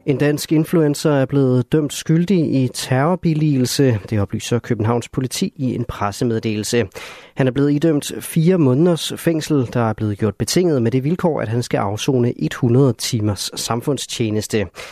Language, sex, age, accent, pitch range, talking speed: Danish, male, 30-49, native, 115-150 Hz, 155 wpm